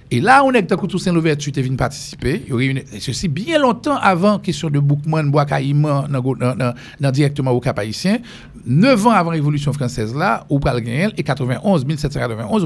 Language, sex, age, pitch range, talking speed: English, male, 50-69, 140-185 Hz, 190 wpm